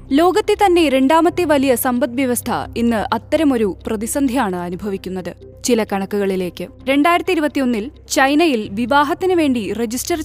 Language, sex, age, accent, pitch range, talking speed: Malayalam, female, 20-39, native, 225-310 Hz, 95 wpm